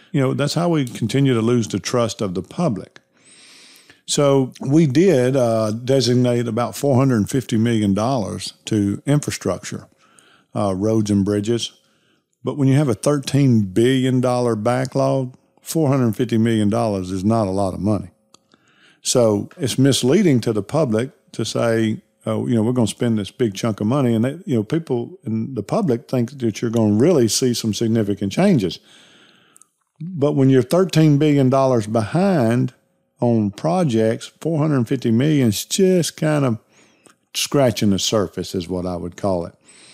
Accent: American